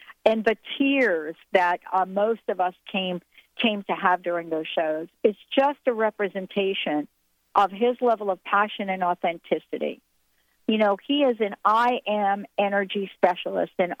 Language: English